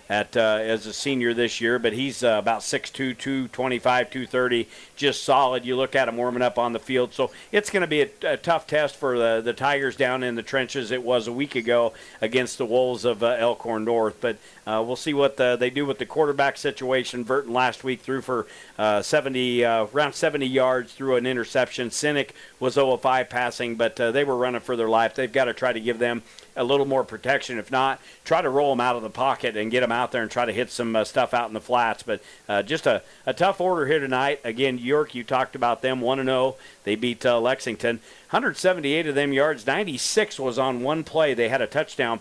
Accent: American